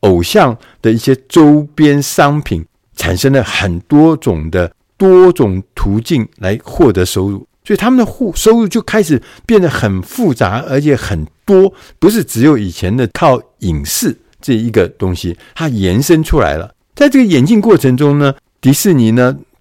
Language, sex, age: Chinese, male, 60-79